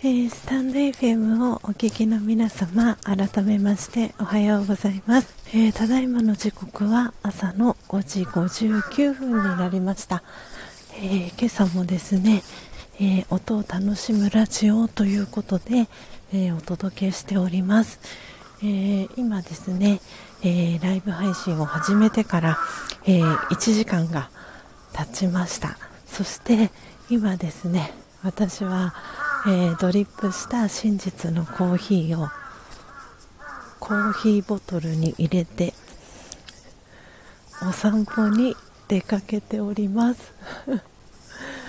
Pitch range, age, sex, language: 180-215 Hz, 40-59, female, Japanese